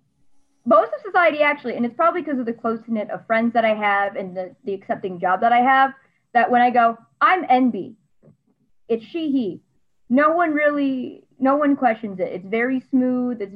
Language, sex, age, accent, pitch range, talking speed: English, female, 20-39, American, 190-255 Hz, 200 wpm